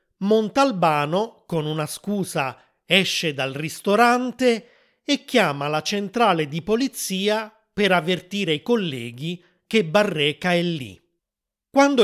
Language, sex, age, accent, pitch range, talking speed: Italian, male, 30-49, native, 155-215 Hz, 110 wpm